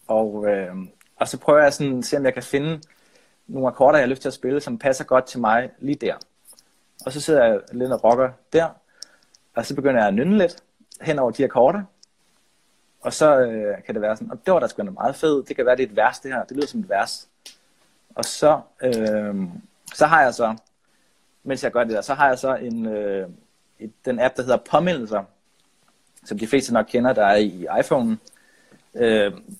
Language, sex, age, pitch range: English, male, 30-49, 110-145 Hz